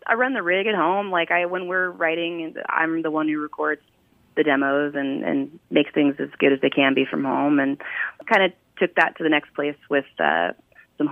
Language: English